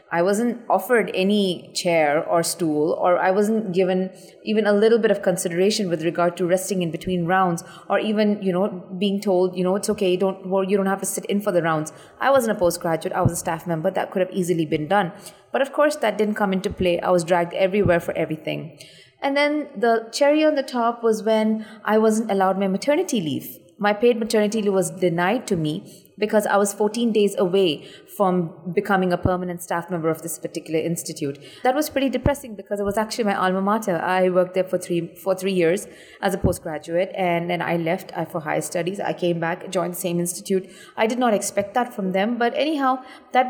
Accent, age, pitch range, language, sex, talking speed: Indian, 30-49, 180-215 Hz, English, female, 220 wpm